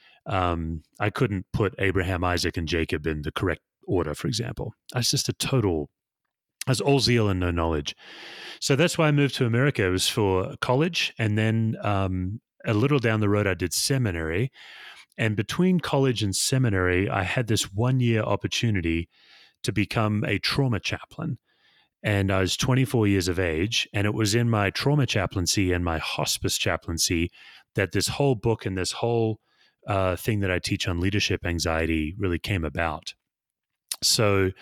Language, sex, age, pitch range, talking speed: English, male, 30-49, 95-120 Hz, 170 wpm